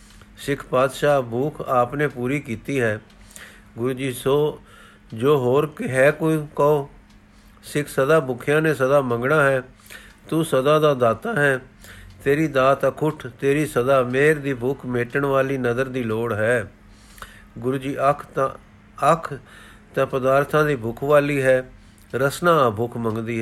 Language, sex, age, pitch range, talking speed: Punjabi, male, 50-69, 115-150 Hz, 140 wpm